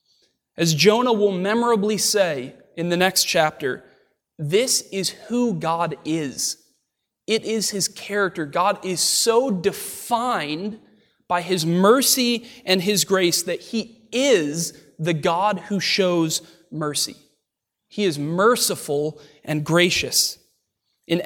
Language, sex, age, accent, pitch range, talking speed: English, male, 20-39, American, 170-220 Hz, 120 wpm